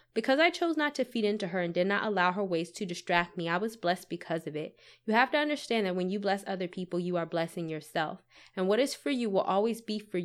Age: 20-39